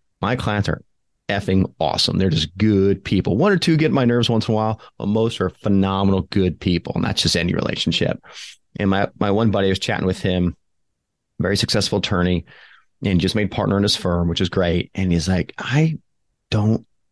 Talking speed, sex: 205 wpm, male